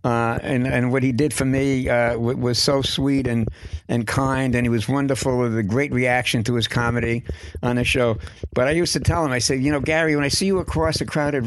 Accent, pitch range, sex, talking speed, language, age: American, 115-145 Hz, male, 250 wpm, English, 60-79